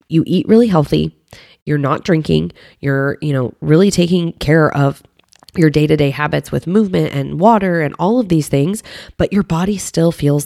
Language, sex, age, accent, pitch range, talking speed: English, female, 20-39, American, 140-175 Hz, 180 wpm